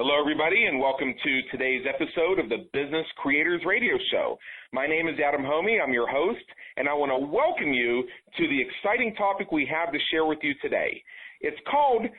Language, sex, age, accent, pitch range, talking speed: English, male, 40-59, American, 130-200 Hz, 195 wpm